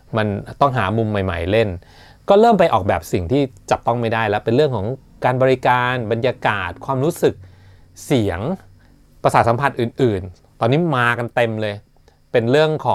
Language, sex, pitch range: Thai, male, 105-140 Hz